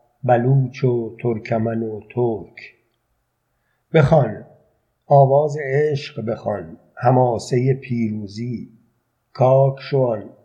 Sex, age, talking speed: male, 50-69, 75 wpm